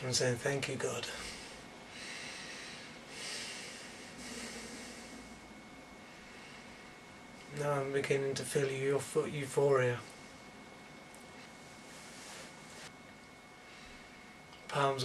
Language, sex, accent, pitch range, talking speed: English, male, British, 125-145 Hz, 60 wpm